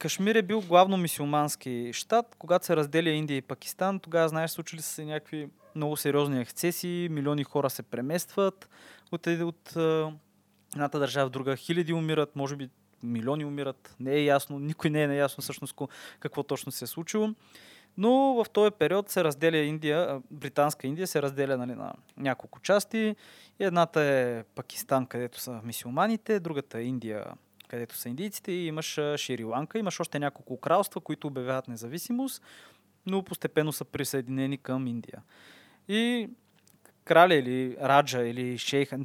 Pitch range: 130-175 Hz